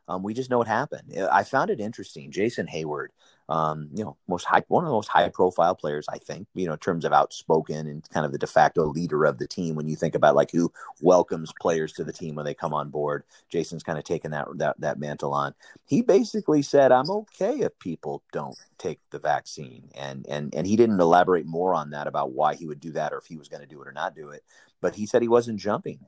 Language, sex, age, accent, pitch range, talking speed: English, male, 30-49, American, 75-105 Hz, 255 wpm